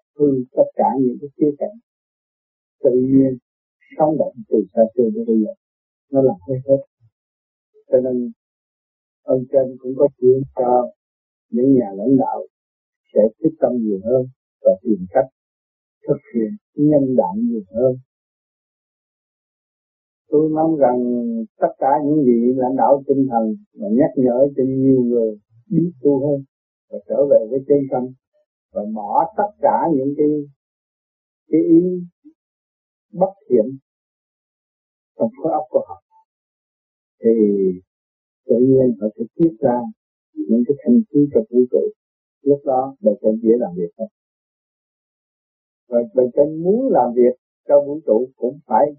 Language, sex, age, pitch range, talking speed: Vietnamese, male, 50-69, 120-155 Hz, 145 wpm